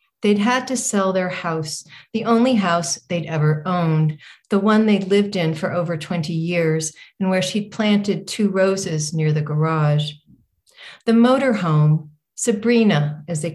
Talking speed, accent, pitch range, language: 160 wpm, American, 160-205 Hz, English